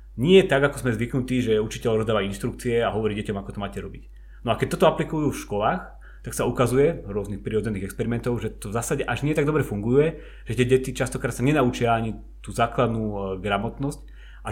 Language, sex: Slovak, male